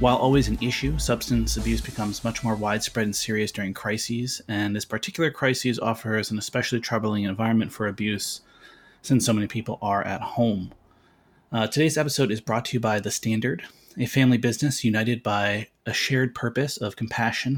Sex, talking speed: male, 180 wpm